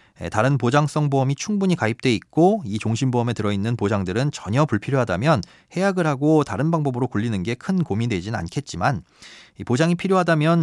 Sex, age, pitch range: male, 30-49, 110-170 Hz